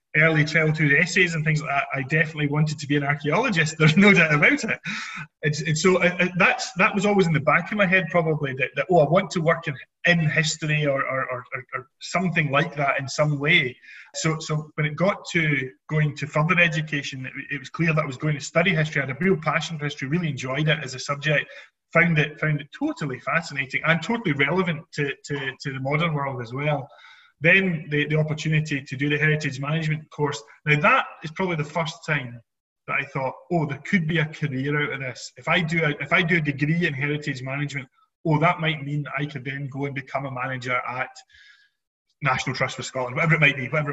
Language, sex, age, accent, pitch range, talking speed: English, male, 20-39, British, 140-165 Hz, 225 wpm